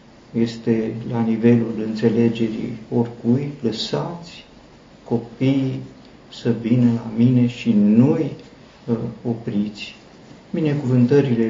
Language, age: Romanian, 50-69